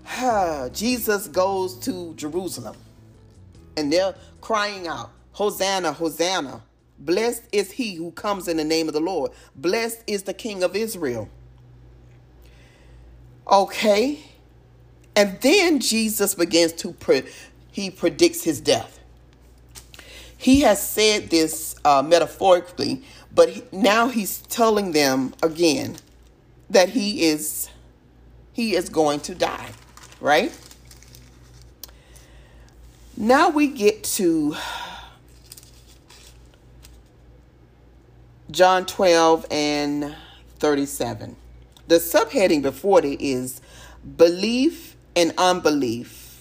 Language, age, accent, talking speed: English, 40-59, American, 95 wpm